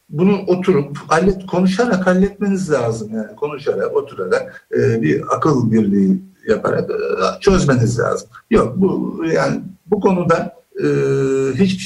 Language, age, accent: Turkish, 60-79, native